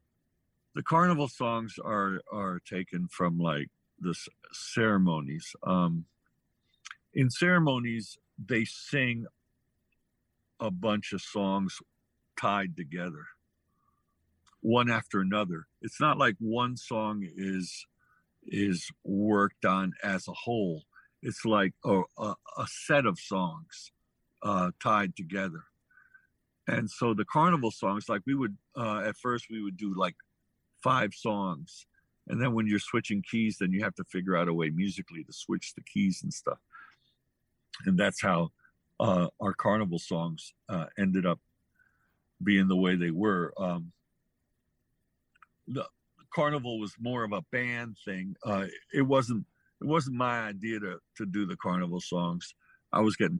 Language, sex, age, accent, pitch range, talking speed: English, male, 60-79, American, 90-120 Hz, 140 wpm